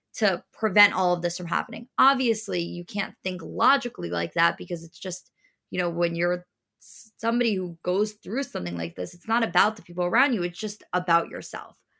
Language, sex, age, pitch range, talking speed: English, female, 20-39, 170-205 Hz, 195 wpm